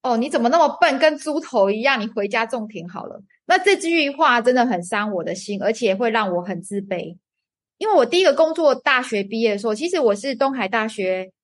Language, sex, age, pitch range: Chinese, female, 20-39, 210-295 Hz